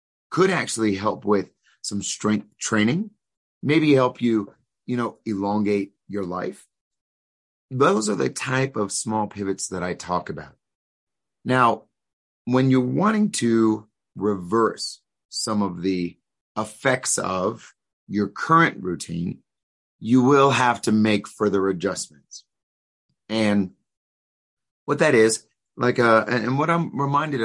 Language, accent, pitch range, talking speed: English, American, 90-120 Hz, 125 wpm